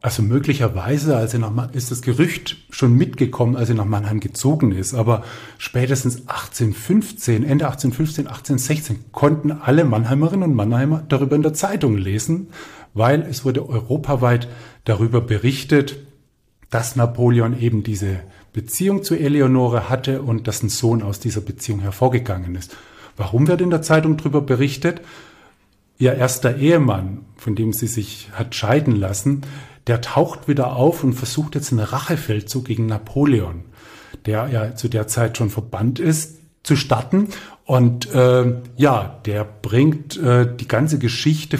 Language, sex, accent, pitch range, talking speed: German, male, German, 115-140 Hz, 150 wpm